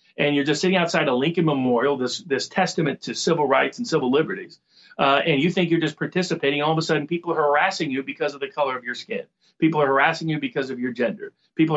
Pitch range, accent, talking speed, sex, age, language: 140-170 Hz, American, 245 wpm, male, 40-59, English